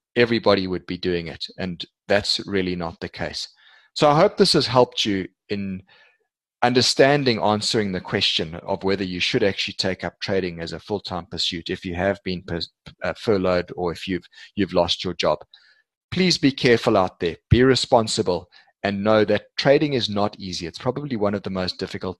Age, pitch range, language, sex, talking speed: 30-49, 90-120 Hz, English, male, 185 wpm